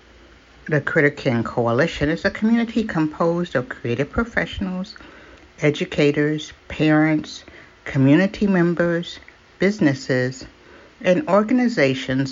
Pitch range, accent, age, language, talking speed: 135-195 Hz, American, 60-79, English, 90 wpm